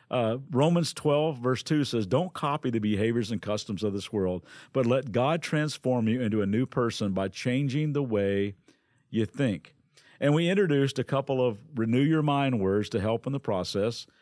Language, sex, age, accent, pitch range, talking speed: English, male, 50-69, American, 115-150 Hz, 185 wpm